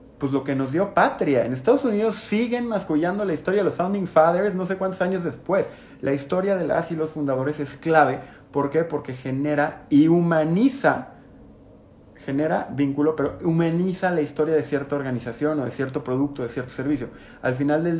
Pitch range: 125-155 Hz